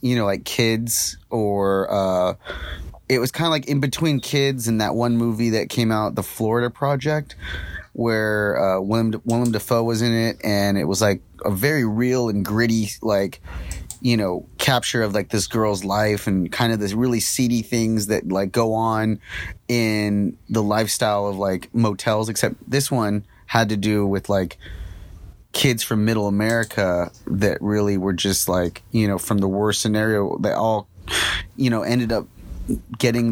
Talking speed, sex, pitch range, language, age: 175 wpm, male, 100-115 Hz, English, 30-49